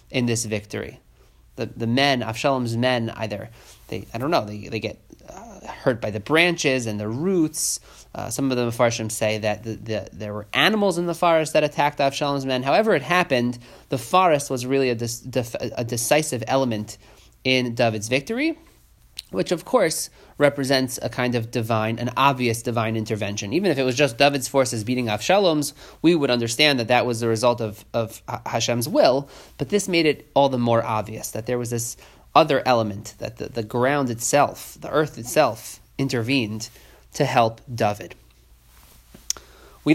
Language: English